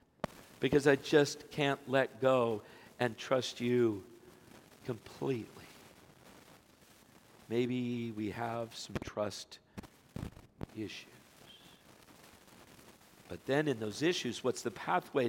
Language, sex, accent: English, male, American